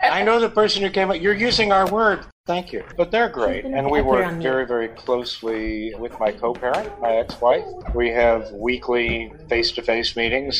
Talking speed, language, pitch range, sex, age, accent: 180 wpm, English, 115-145 Hz, male, 50-69, American